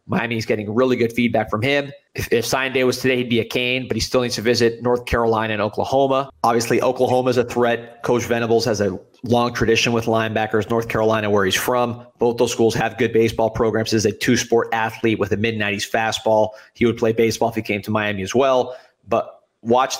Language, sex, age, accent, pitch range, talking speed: English, male, 30-49, American, 110-125 Hz, 220 wpm